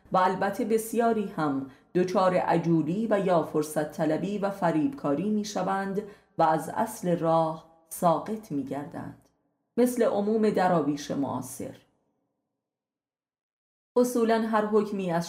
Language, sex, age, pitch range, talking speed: Persian, female, 30-49, 155-205 Hz, 105 wpm